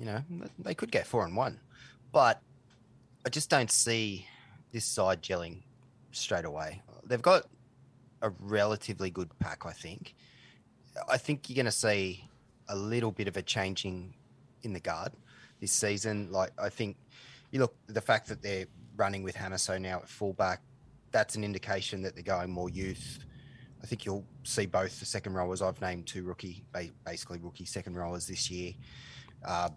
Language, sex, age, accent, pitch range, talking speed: English, male, 20-39, Australian, 90-120 Hz, 175 wpm